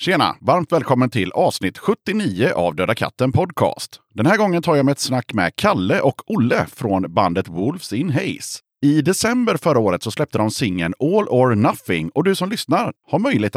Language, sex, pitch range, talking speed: Swedish, male, 100-145 Hz, 195 wpm